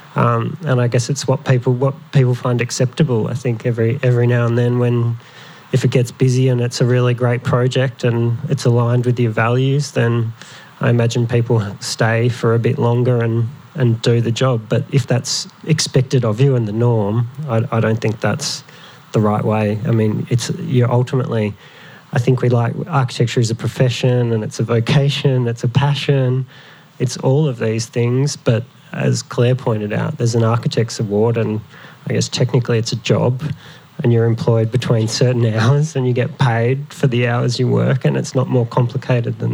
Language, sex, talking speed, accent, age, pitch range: English, male, 210 wpm, Australian, 20-39, 120-140 Hz